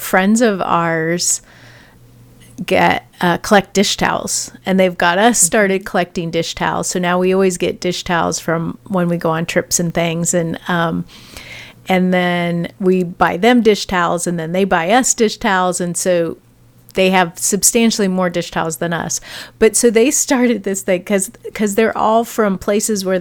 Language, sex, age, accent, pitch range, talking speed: English, female, 40-59, American, 170-195 Hz, 180 wpm